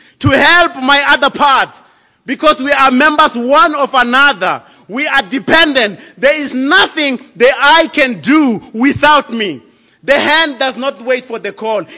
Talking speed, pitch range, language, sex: 160 wpm, 215-280 Hz, English, male